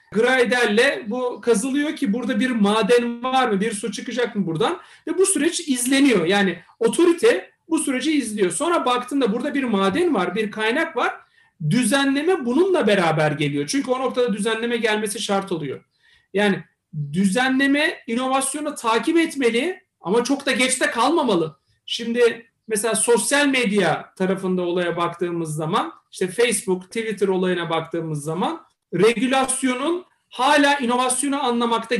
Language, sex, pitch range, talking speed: Turkish, male, 205-270 Hz, 135 wpm